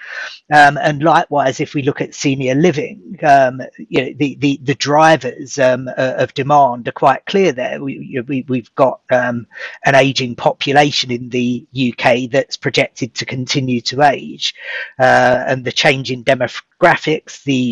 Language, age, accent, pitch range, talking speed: English, 40-59, British, 125-145 Hz, 145 wpm